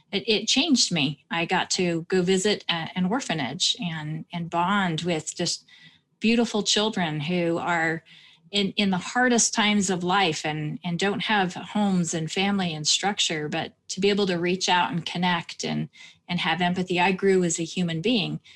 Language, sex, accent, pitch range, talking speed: English, female, American, 165-195 Hz, 175 wpm